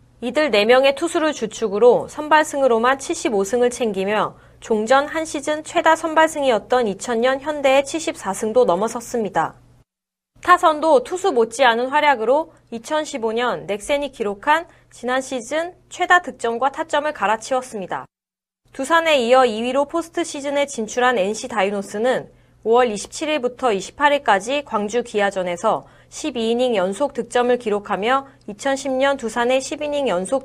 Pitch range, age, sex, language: 220-290 Hz, 20-39, female, Korean